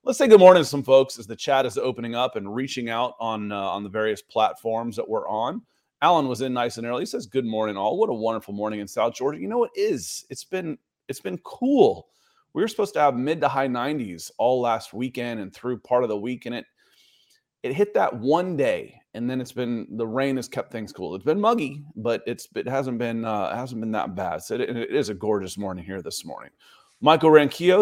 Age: 30-49